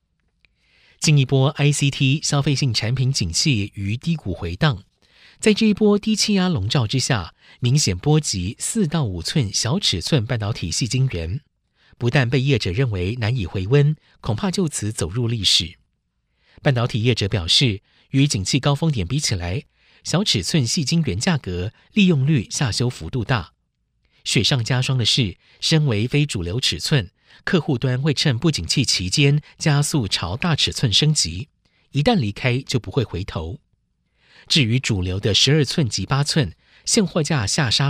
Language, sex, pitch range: Chinese, male, 100-150 Hz